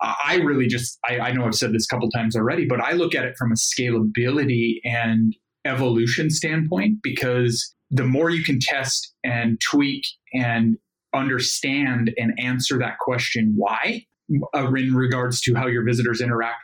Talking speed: 165 wpm